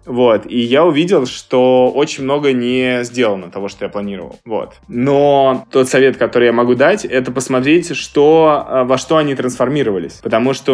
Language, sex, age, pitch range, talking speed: Russian, male, 20-39, 120-135 Hz, 170 wpm